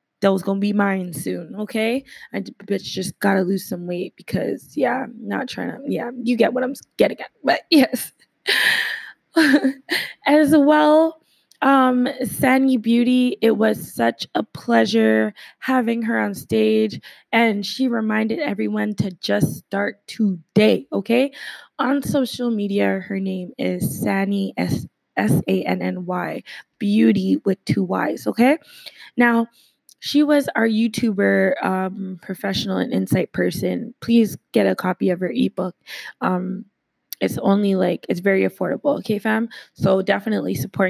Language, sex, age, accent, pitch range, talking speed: English, female, 20-39, American, 185-240 Hz, 140 wpm